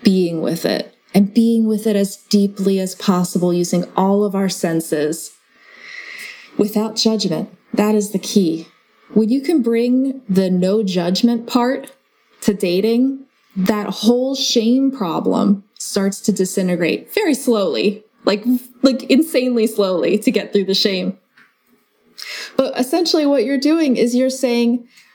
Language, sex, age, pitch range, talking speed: English, female, 20-39, 190-245 Hz, 140 wpm